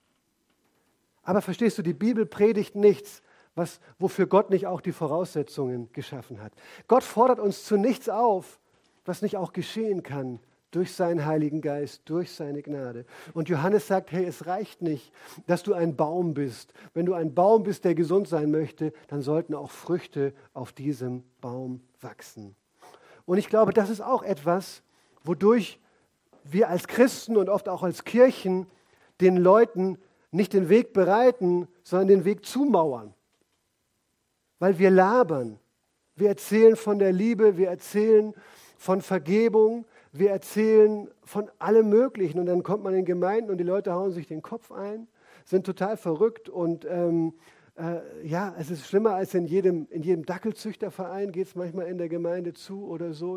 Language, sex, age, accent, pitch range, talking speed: German, male, 50-69, German, 165-205 Hz, 165 wpm